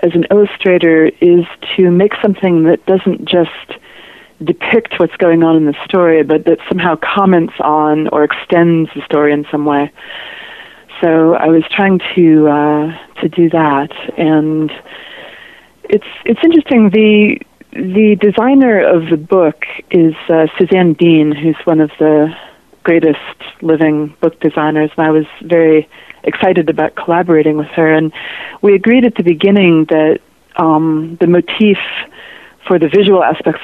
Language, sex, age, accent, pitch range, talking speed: English, female, 40-59, American, 155-185 Hz, 150 wpm